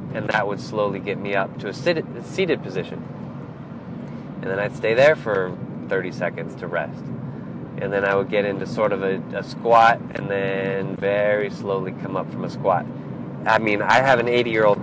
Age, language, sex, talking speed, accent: 20-39, English, male, 195 wpm, American